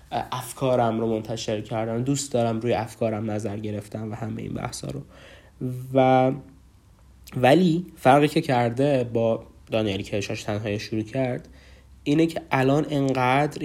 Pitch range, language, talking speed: 110-130 Hz, Persian, 130 wpm